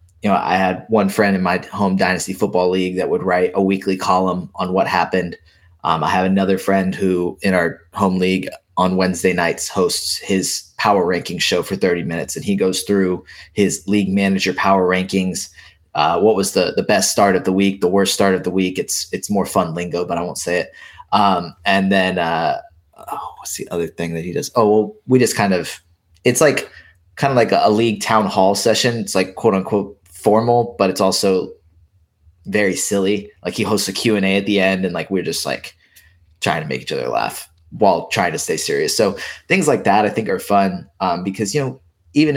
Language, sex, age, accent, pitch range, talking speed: English, male, 20-39, American, 90-100 Hz, 220 wpm